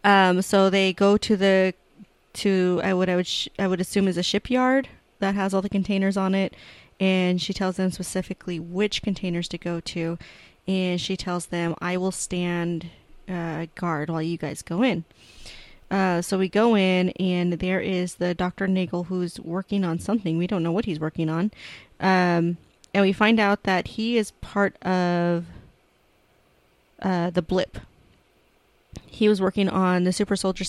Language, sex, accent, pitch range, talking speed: English, female, American, 175-195 Hz, 175 wpm